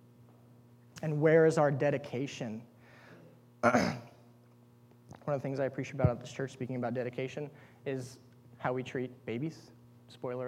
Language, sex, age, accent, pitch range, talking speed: English, male, 20-39, American, 125-170 Hz, 130 wpm